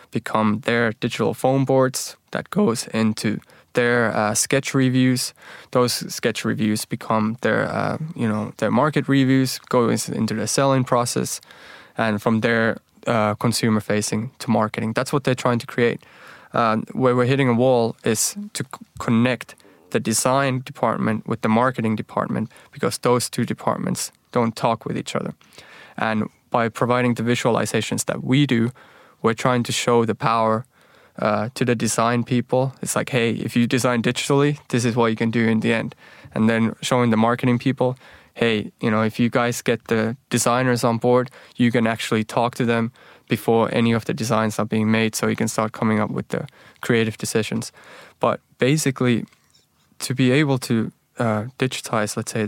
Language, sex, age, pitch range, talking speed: English, male, 20-39, 110-125 Hz, 175 wpm